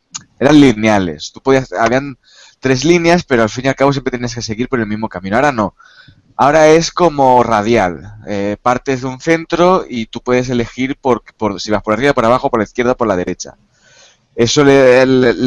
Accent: Spanish